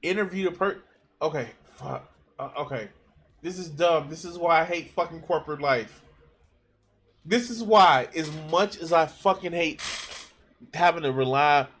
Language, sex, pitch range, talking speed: English, male, 130-185 Hz, 155 wpm